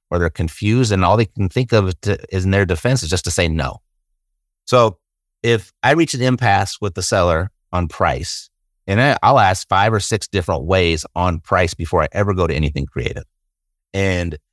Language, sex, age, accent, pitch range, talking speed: English, male, 30-49, American, 90-120 Hz, 195 wpm